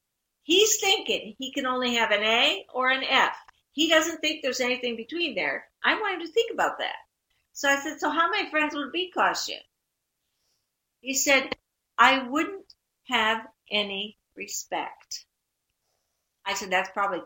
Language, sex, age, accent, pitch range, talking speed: English, female, 50-69, American, 180-270 Hz, 165 wpm